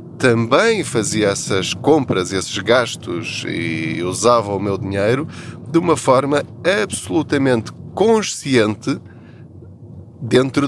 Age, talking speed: 20-39, 95 wpm